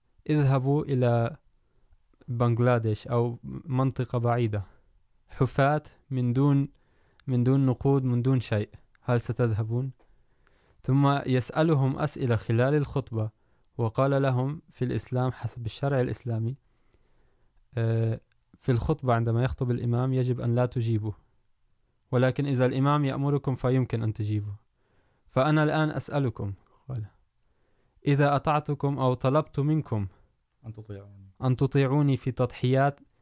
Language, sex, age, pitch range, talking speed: Urdu, male, 20-39, 115-135 Hz, 105 wpm